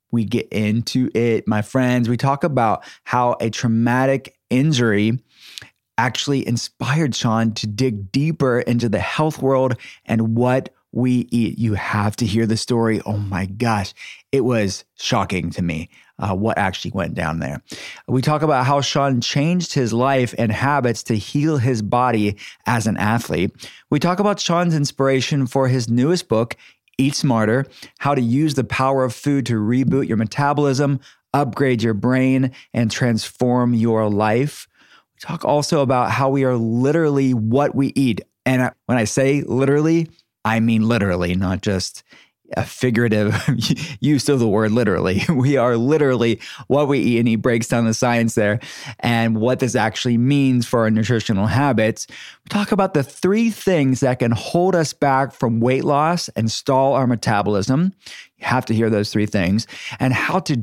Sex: male